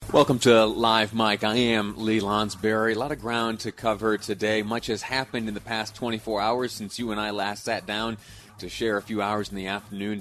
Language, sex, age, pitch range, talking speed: English, male, 30-49, 95-115 Hz, 225 wpm